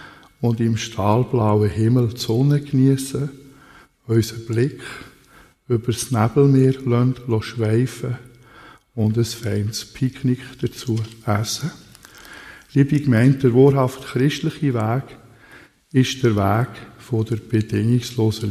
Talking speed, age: 100 wpm, 50-69